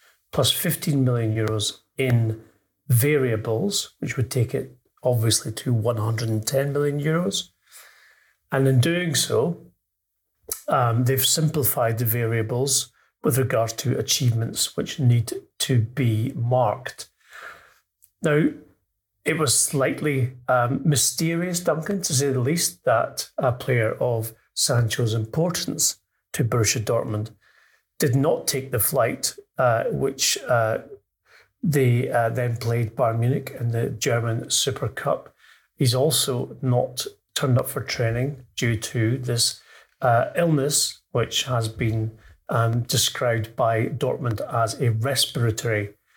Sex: male